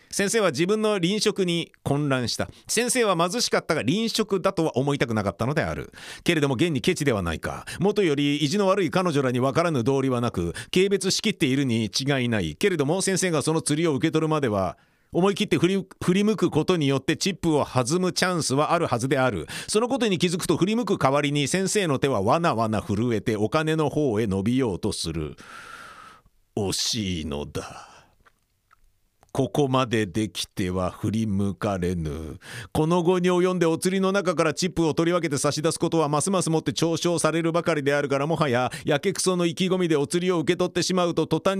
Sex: male